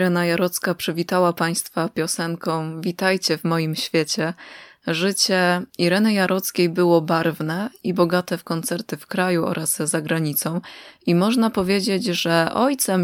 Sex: female